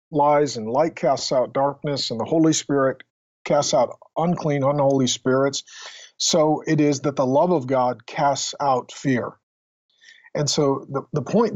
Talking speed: 155 wpm